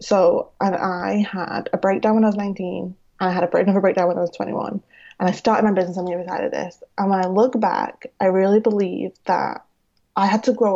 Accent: British